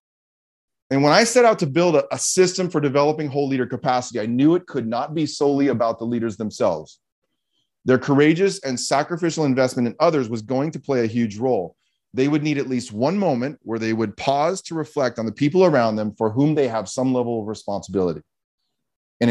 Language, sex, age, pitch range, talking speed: English, male, 30-49, 115-150 Hz, 205 wpm